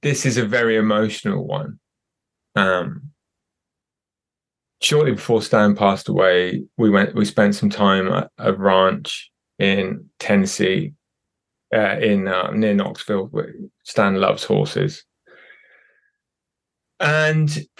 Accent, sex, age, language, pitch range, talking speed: British, male, 20-39, English, 105-135 Hz, 110 wpm